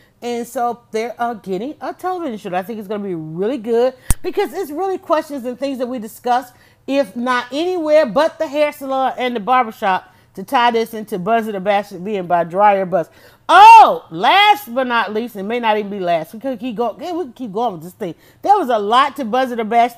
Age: 40-59